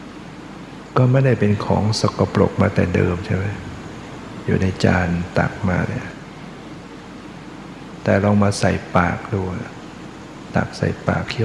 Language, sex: Thai, male